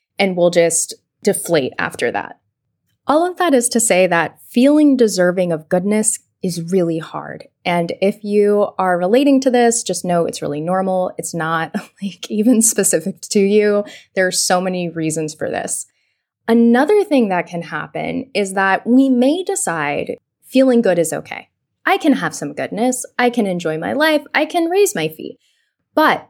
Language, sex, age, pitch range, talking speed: English, female, 10-29, 180-255 Hz, 175 wpm